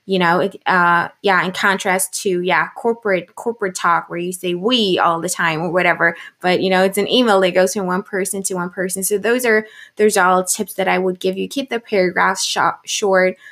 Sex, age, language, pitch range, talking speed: female, 20-39, English, 185-220 Hz, 220 wpm